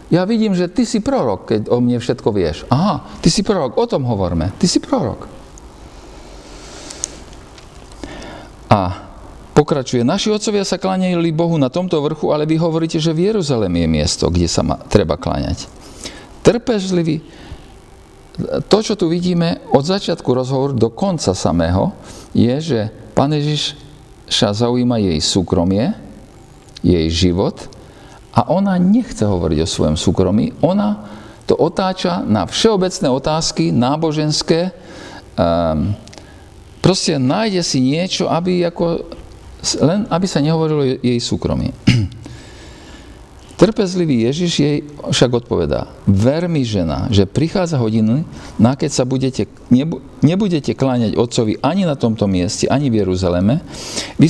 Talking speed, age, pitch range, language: 130 wpm, 50-69, 105-165 Hz, Slovak